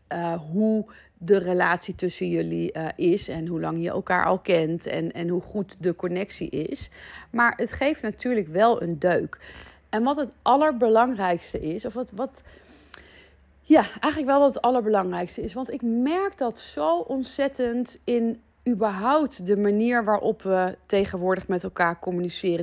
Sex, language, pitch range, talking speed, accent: female, Dutch, 185-250 Hz, 160 wpm, Dutch